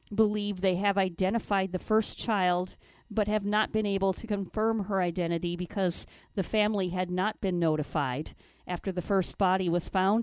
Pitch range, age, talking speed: 185-225 Hz, 50-69, 170 wpm